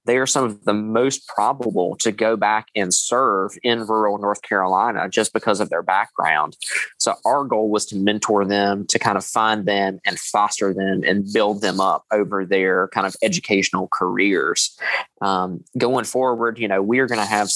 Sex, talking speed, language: male, 190 wpm, English